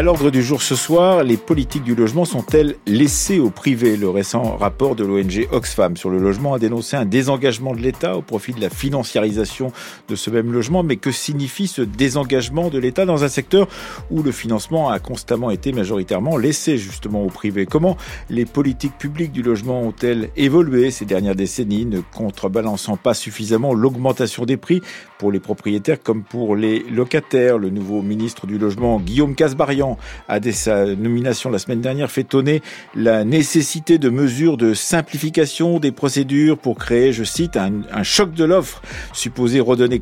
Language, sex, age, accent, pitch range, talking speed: French, male, 50-69, French, 105-140 Hz, 175 wpm